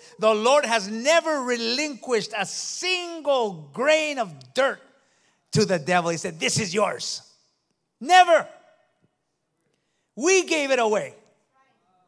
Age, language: 50-69, English